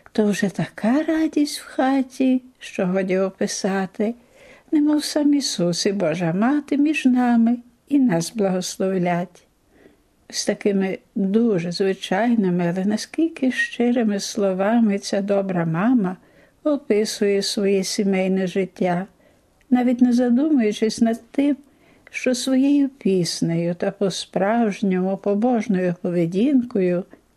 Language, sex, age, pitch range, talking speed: Ukrainian, female, 60-79, 185-250 Hz, 105 wpm